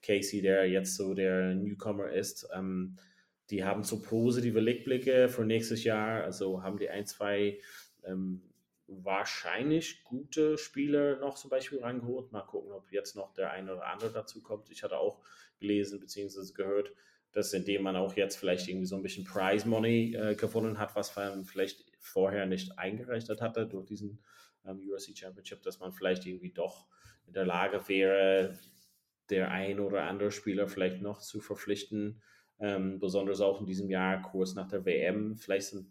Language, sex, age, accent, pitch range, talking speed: German, male, 30-49, German, 95-105 Hz, 170 wpm